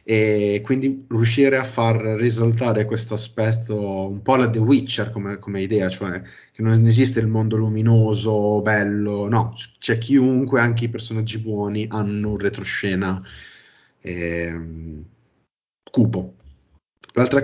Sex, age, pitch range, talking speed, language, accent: male, 30-49, 105-120 Hz, 125 wpm, Italian, native